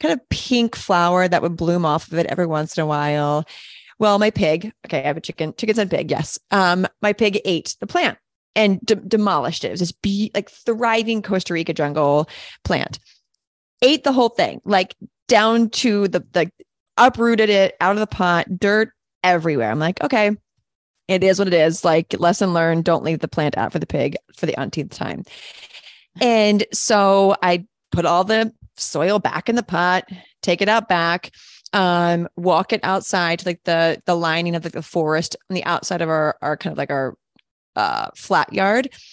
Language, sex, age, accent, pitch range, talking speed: English, female, 30-49, American, 170-215 Hz, 195 wpm